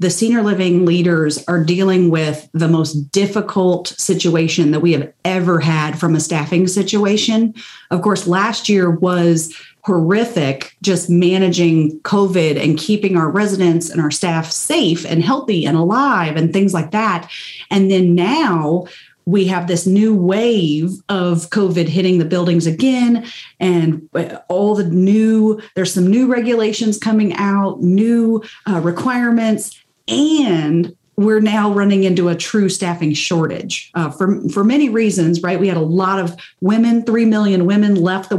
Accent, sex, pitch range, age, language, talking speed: American, female, 170-205 Hz, 40-59, English, 155 wpm